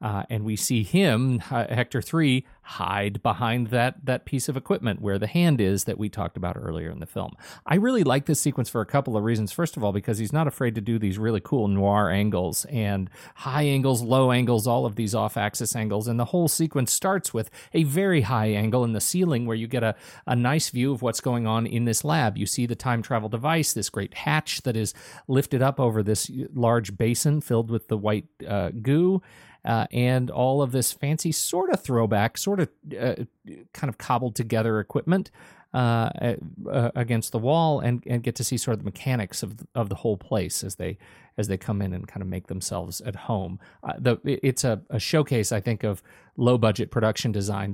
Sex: male